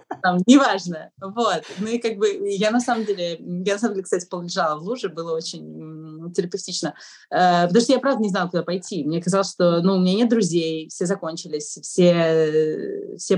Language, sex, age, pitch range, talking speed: Russian, female, 30-49, 170-215 Hz, 190 wpm